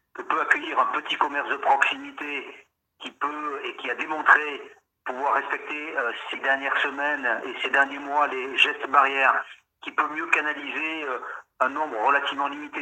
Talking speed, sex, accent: 165 wpm, male, French